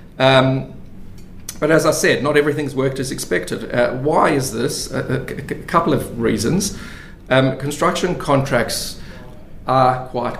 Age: 40-59